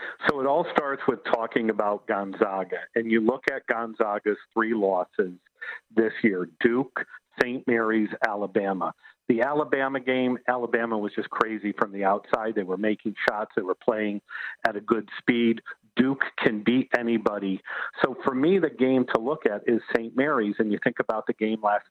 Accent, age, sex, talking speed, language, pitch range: American, 50-69, male, 175 wpm, English, 110-135 Hz